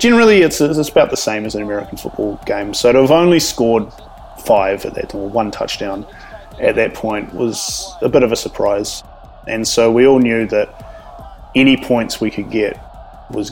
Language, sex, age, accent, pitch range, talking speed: English, male, 30-49, Australian, 105-125 Hz, 190 wpm